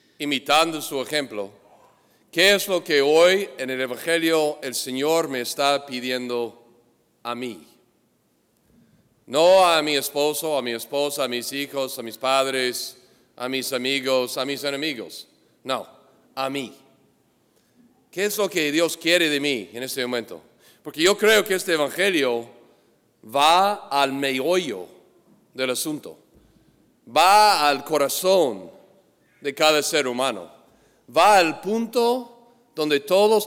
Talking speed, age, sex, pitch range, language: 135 wpm, 40-59, male, 130-170 Hz, English